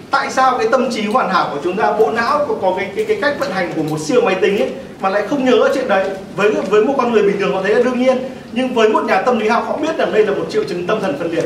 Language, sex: Vietnamese, male